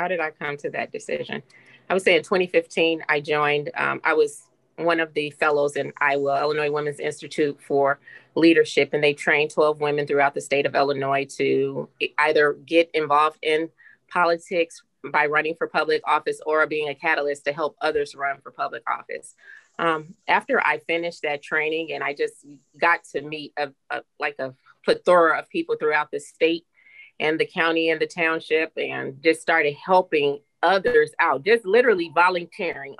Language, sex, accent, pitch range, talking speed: English, female, American, 150-180 Hz, 175 wpm